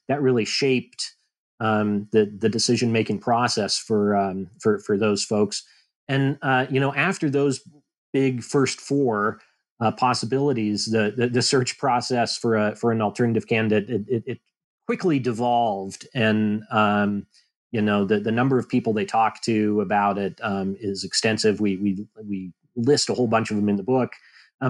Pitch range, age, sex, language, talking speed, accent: 105-125 Hz, 30-49, male, English, 175 wpm, American